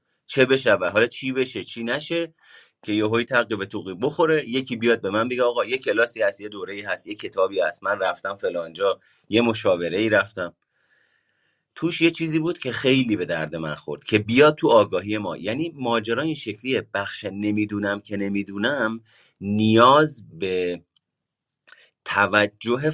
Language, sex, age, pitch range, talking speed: Persian, male, 30-49, 105-155 Hz, 160 wpm